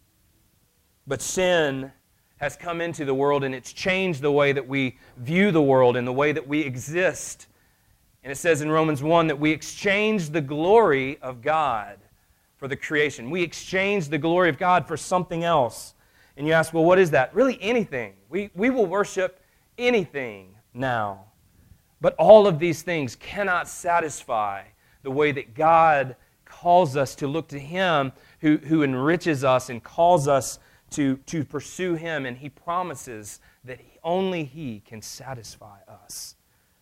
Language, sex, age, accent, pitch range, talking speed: English, male, 30-49, American, 130-170 Hz, 165 wpm